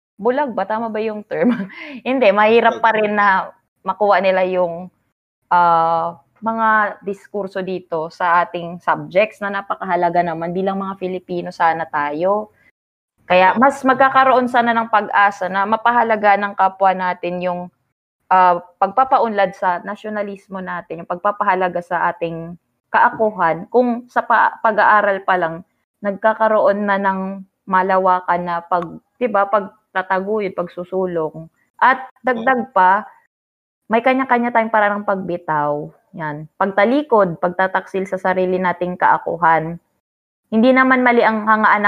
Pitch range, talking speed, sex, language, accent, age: 180-225 Hz, 130 wpm, female, Filipino, native, 20-39